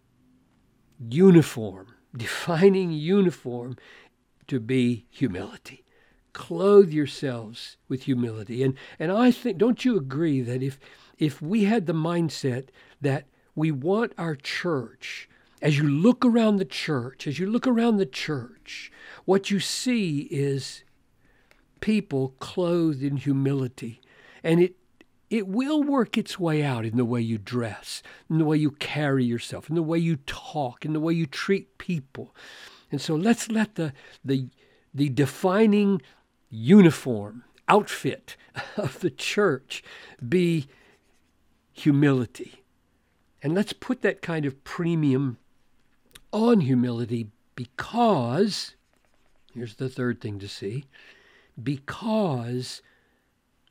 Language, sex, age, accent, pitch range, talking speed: English, male, 60-79, American, 125-190 Hz, 125 wpm